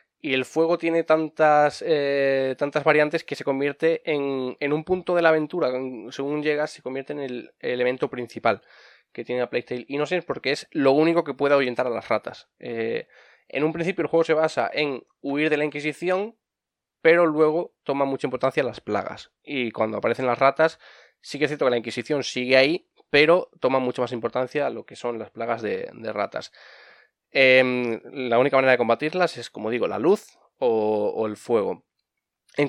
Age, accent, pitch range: 20-39, Spanish, 130-160 Hz